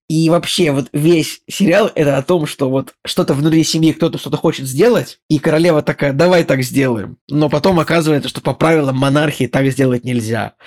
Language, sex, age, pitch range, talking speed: Russian, male, 20-39, 135-165 Hz, 185 wpm